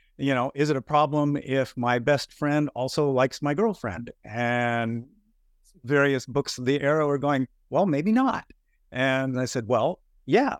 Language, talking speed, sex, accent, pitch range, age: English, 170 wpm, male, American, 115-140 Hz, 50-69